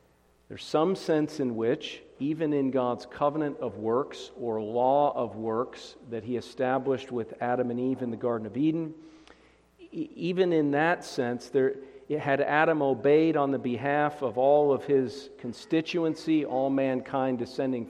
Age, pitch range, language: 40-59, 125-150 Hz, English